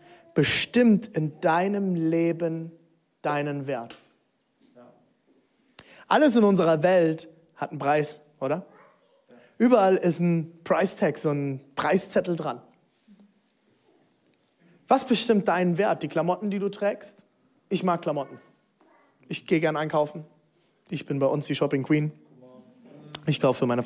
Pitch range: 150-210 Hz